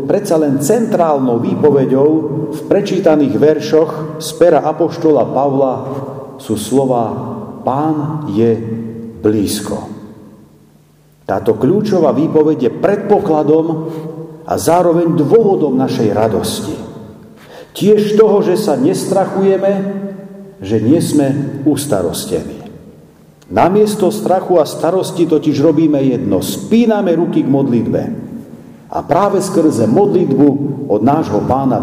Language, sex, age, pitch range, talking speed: Slovak, male, 50-69, 135-160 Hz, 100 wpm